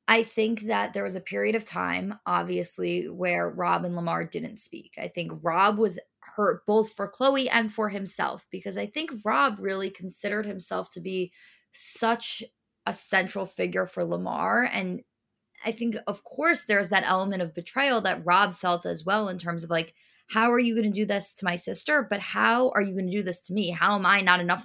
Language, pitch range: English, 175-215 Hz